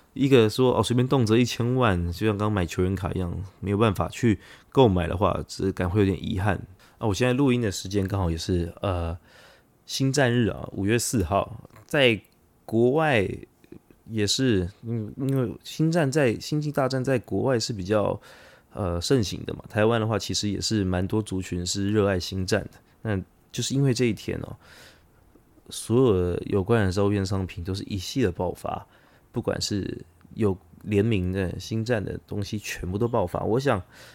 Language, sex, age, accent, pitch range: Chinese, male, 20-39, native, 95-120 Hz